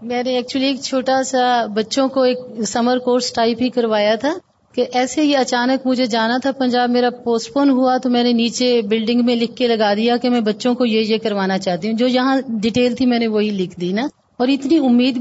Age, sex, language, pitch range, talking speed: 30-49, female, Urdu, 230-265 Hz, 230 wpm